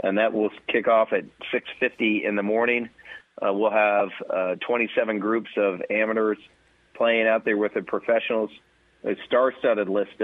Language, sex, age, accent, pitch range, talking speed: English, male, 40-59, American, 100-115 Hz, 160 wpm